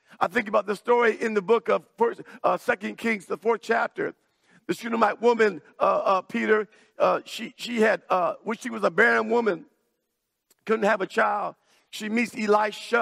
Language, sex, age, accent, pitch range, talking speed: English, male, 50-69, American, 215-250 Hz, 180 wpm